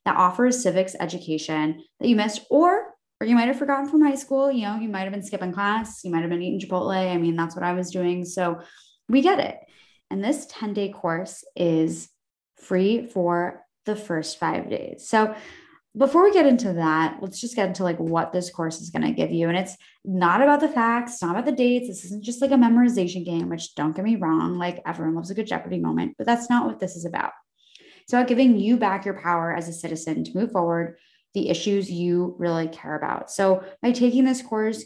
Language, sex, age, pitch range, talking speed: English, female, 20-39, 175-235 Hz, 215 wpm